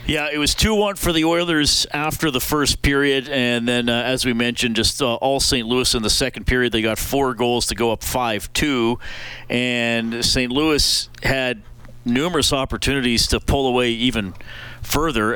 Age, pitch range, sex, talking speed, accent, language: 40-59, 110-130 Hz, male, 175 wpm, American, English